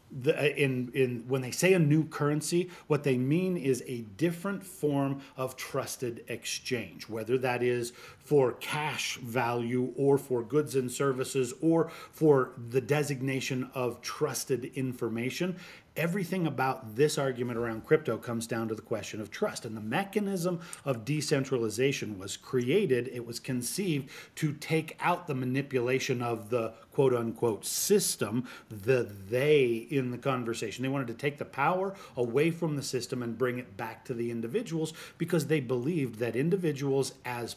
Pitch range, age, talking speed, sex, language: 125-155 Hz, 40-59, 150 wpm, male, English